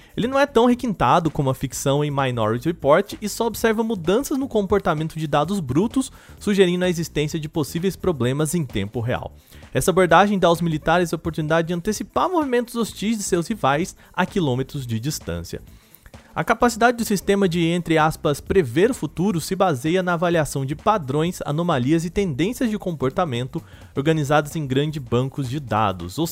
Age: 30-49